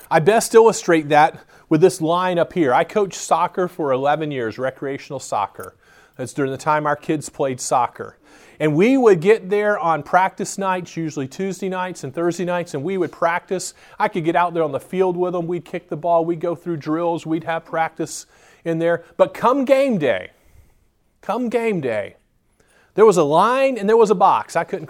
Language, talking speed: English, 200 wpm